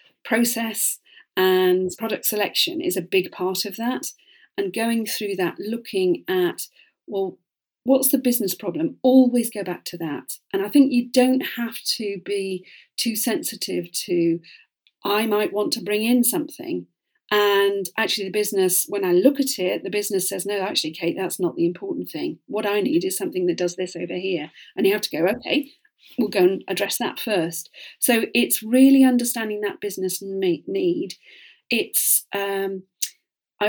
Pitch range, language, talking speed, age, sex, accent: 185-250 Hz, English, 175 wpm, 40-59, female, British